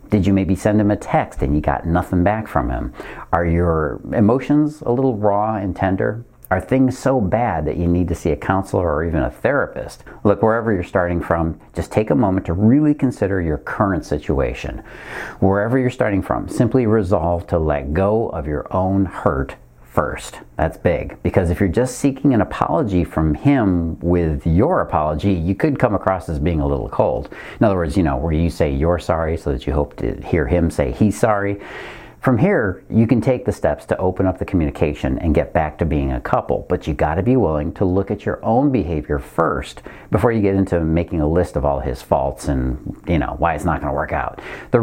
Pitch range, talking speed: 80-105 Hz, 215 wpm